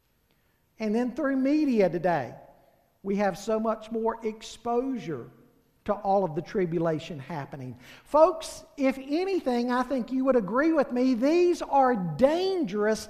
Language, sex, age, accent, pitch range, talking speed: English, male, 50-69, American, 205-280 Hz, 135 wpm